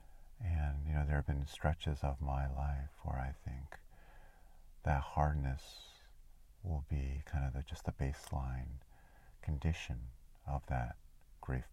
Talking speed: 135 wpm